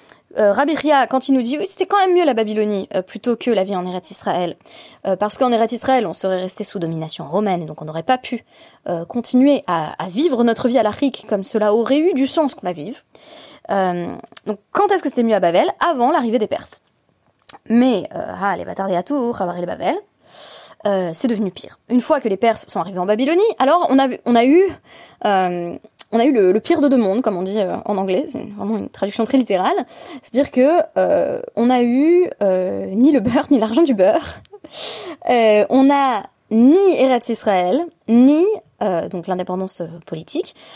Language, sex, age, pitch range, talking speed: French, female, 20-39, 195-280 Hz, 215 wpm